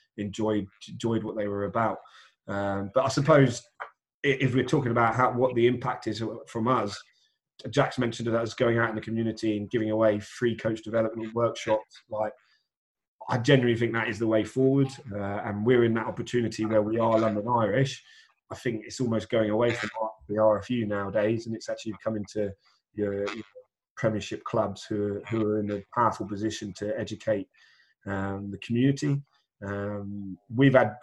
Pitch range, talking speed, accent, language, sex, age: 105-120 Hz, 180 wpm, British, English, male, 20-39